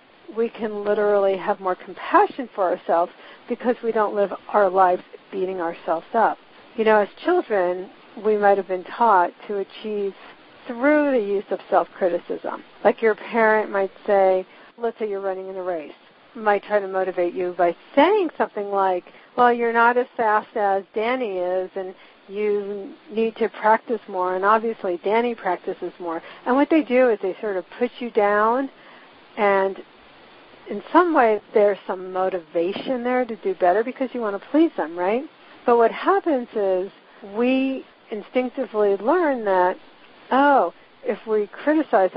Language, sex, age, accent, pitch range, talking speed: English, female, 50-69, American, 190-235 Hz, 160 wpm